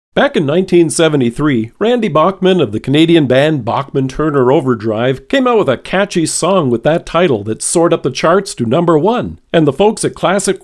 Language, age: English, 50-69